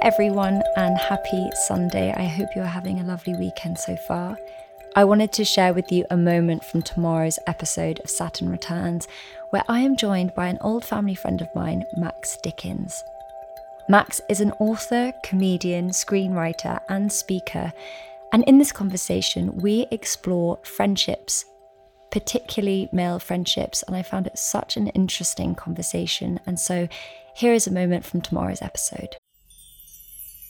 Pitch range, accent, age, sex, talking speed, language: 165-200 Hz, British, 20-39, female, 150 wpm, English